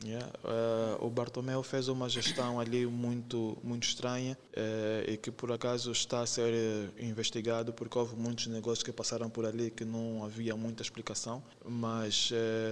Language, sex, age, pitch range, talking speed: Portuguese, male, 20-39, 115-125 Hz, 160 wpm